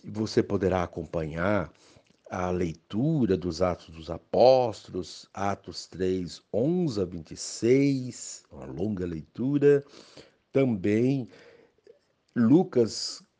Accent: Brazilian